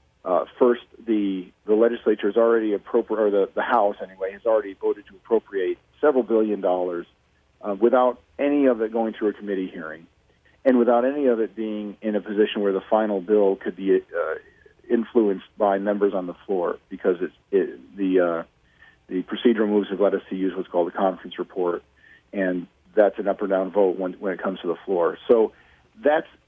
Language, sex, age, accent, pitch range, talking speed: English, male, 40-59, American, 95-125 Hz, 195 wpm